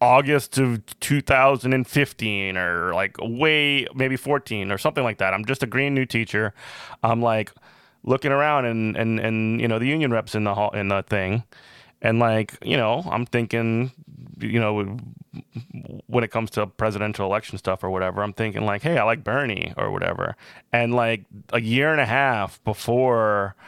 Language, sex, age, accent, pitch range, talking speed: English, male, 30-49, American, 105-125 Hz, 175 wpm